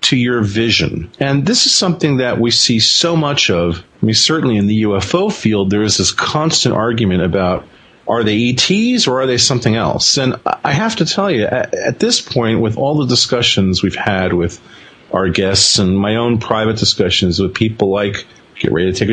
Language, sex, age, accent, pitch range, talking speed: English, male, 40-59, American, 100-130 Hz, 205 wpm